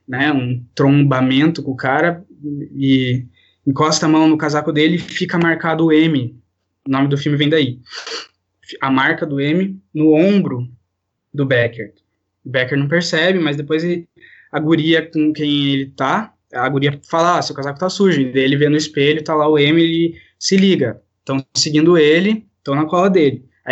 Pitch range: 135-160 Hz